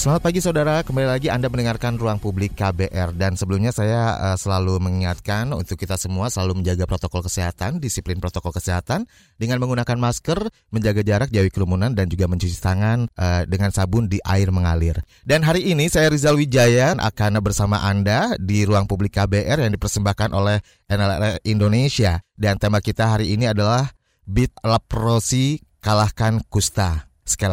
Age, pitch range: 30-49, 100-130 Hz